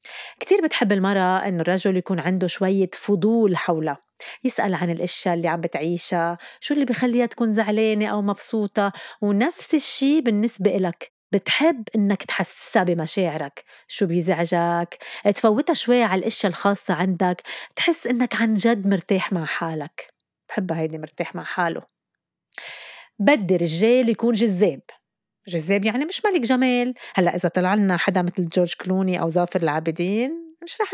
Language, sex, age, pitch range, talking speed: Arabic, female, 30-49, 180-230 Hz, 140 wpm